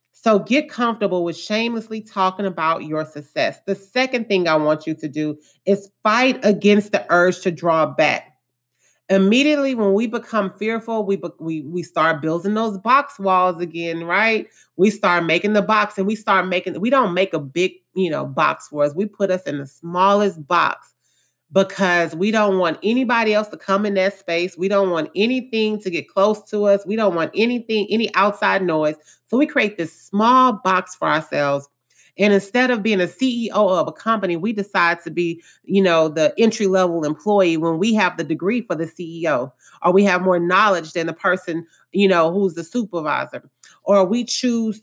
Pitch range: 170-215 Hz